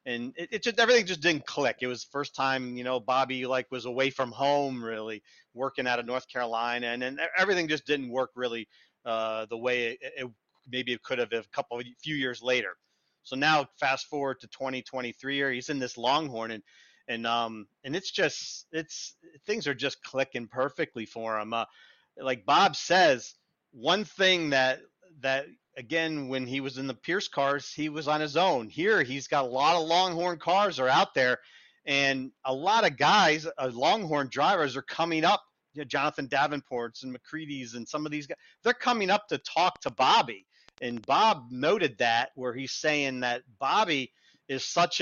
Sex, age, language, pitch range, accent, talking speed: male, 40-59, English, 125-160 Hz, American, 190 wpm